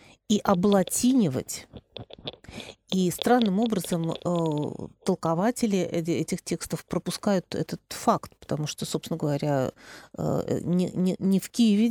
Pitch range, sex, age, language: 160-195 Hz, female, 40-59, Russian